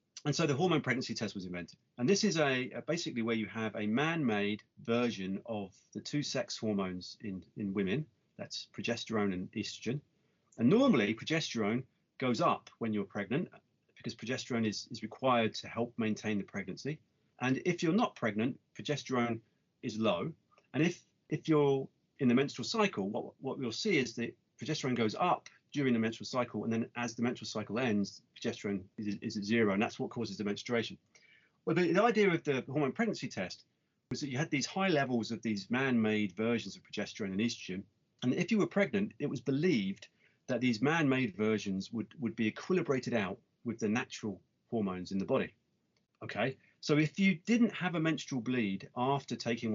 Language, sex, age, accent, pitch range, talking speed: English, male, 30-49, British, 110-145 Hz, 190 wpm